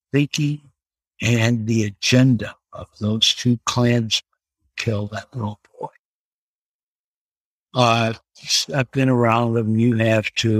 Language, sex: English, male